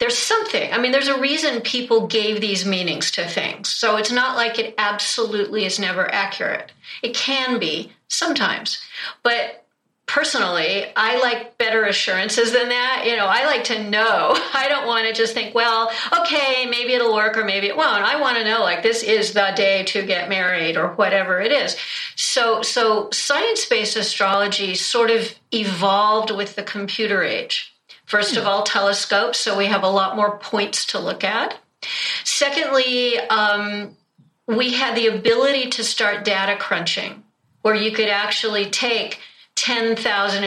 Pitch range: 200-240 Hz